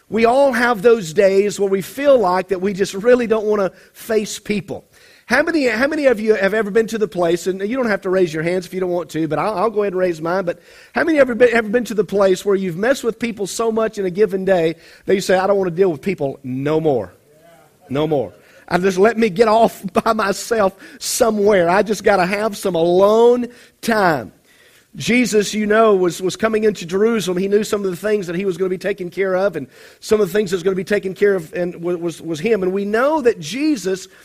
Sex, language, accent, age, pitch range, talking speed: male, English, American, 40-59, 190-230 Hz, 260 wpm